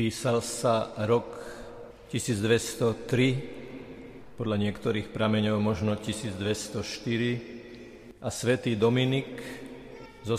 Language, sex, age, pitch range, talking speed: Slovak, male, 50-69, 115-130 Hz, 75 wpm